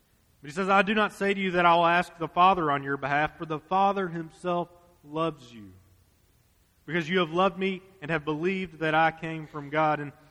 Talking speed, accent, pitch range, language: 220 wpm, American, 150-190 Hz, English